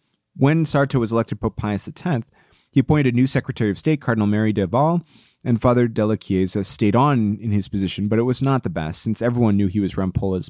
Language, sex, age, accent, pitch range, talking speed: English, male, 30-49, American, 105-125 Hz, 225 wpm